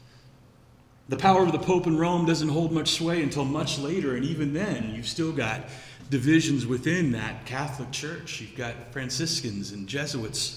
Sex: male